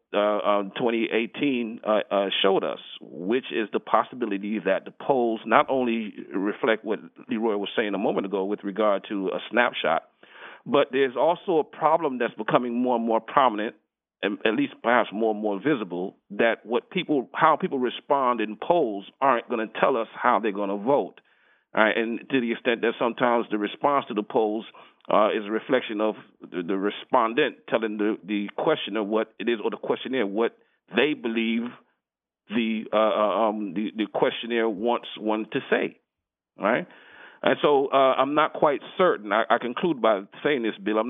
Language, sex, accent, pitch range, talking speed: English, male, American, 105-120 Hz, 185 wpm